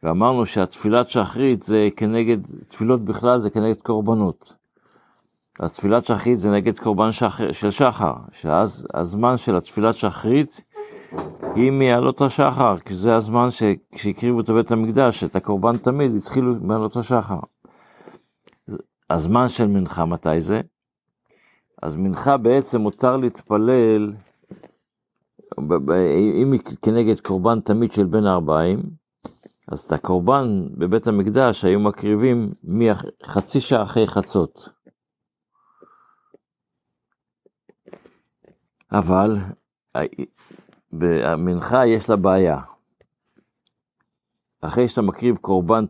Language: Hebrew